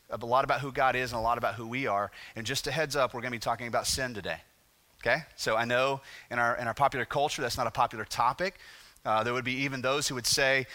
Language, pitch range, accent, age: English, 120-155 Hz, American, 30-49